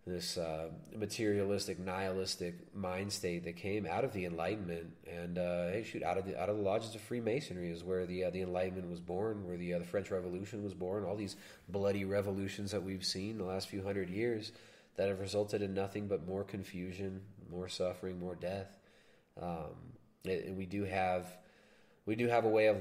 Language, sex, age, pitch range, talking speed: English, male, 20-39, 90-100 Hz, 200 wpm